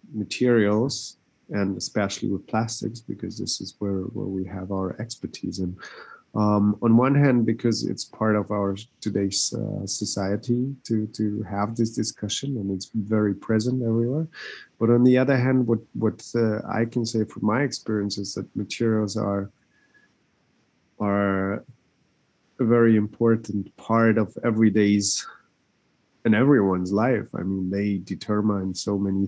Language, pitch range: English, 95-115 Hz